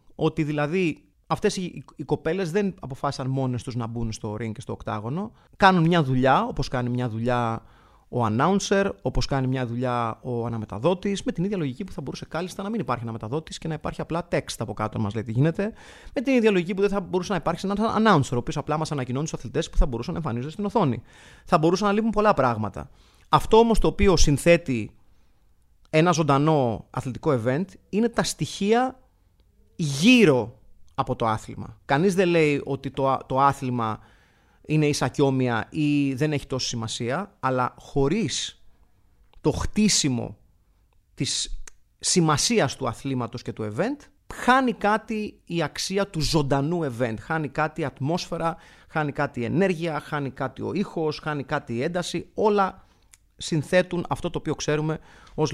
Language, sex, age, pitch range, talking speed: Greek, male, 30-49, 125-175 Hz, 170 wpm